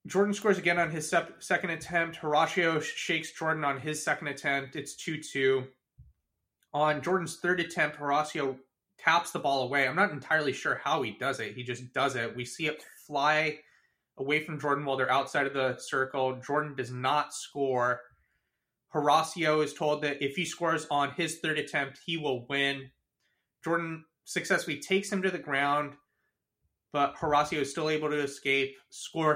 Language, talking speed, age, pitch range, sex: English, 170 wpm, 30-49, 135-155 Hz, male